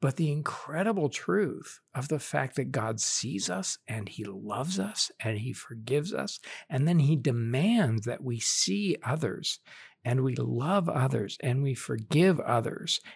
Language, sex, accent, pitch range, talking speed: English, male, American, 115-165 Hz, 160 wpm